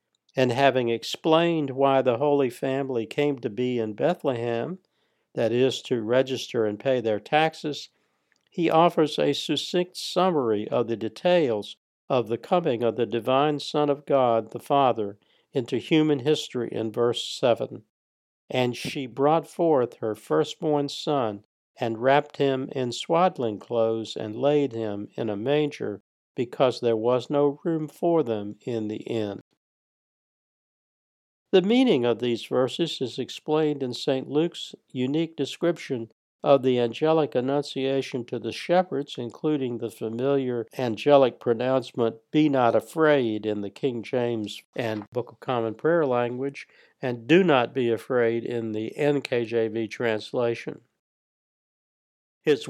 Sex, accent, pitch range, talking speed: male, American, 115-150 Hz, 140 wpm